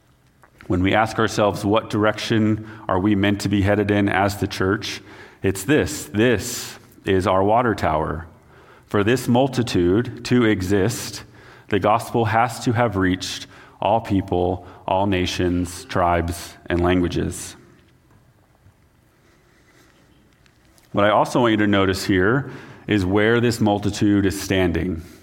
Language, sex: English, male